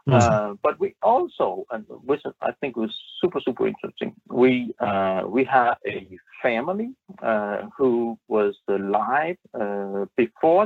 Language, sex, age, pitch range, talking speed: English, male, 50-69, 110-175 Hz, 140 wpm